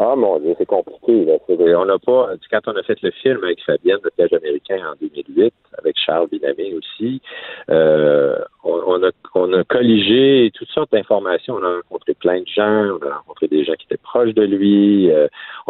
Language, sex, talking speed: French, male, 210 wpm